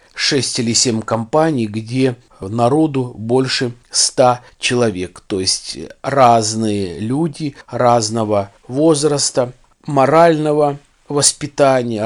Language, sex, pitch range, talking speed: Russian, male, 110-140 Hz, 85 wpm